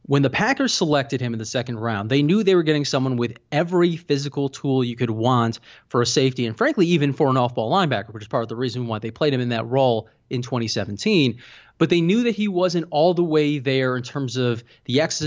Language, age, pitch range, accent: English, 20-39, 120-150 Hz, American